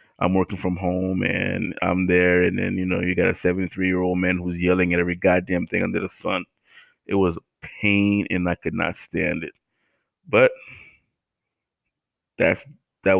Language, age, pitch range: English, 20-39, 90-95 Hz